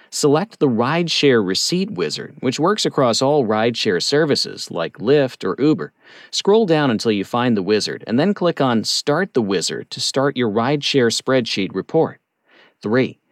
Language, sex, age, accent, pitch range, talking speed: English, male, 40-59, American, 115-170 Hz, 160 wpm